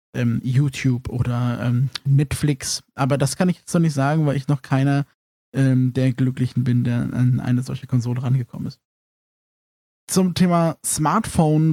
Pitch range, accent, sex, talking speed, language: 130-155 Hz, German, male, 155 wpm, German